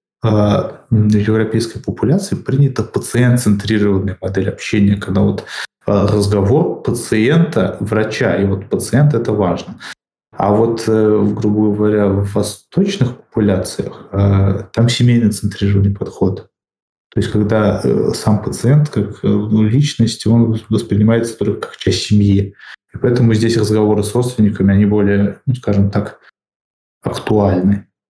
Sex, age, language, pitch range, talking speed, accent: male, 20-39, Russian, 100-110 Hz, 115 wpm, native